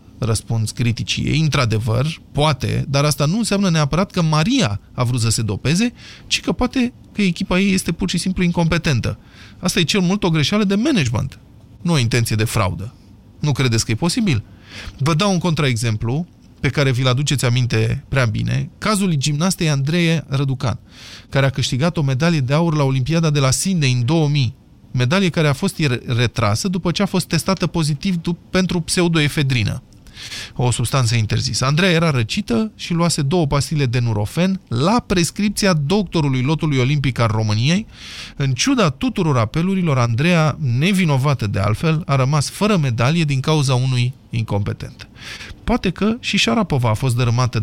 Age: 20-39